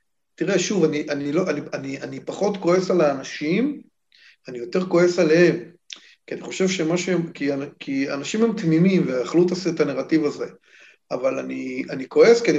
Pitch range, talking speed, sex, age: 145-185 Hz, 165 wpm, male, 40-59